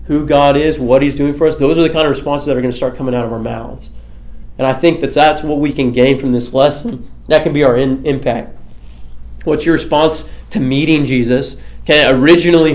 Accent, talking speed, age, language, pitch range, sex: American, 235 wpm, 20-39, English, 115-145 Hz, male